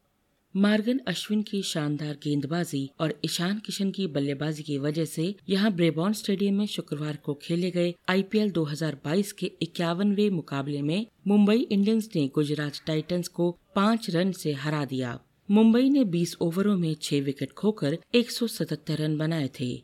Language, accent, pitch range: Hindi, native, 150-195 Hz